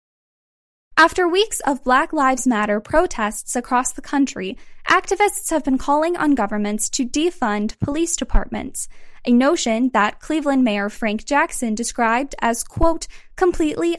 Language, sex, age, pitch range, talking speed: English, female, 10-29, 230-315 Hz, 135 wpm